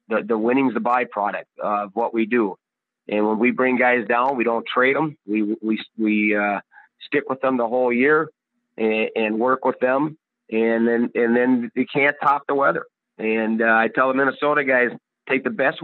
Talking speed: 200 wpm